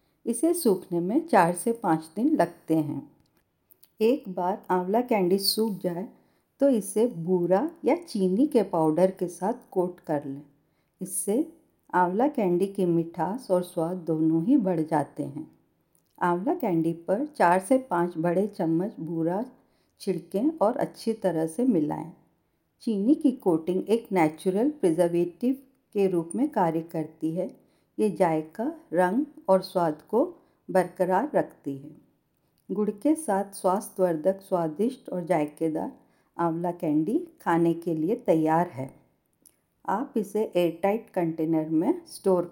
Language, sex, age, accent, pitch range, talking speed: Hindi, female, 50-69, native, 170-230 Hz, 135 wpm